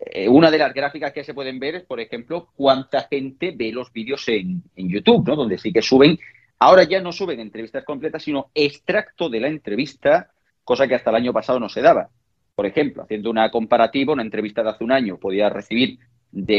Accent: Spanish